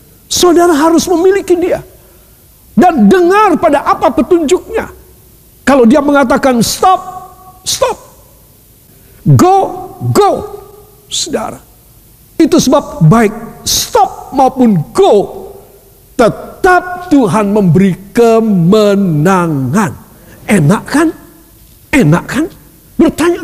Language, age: Indonesian, 50-69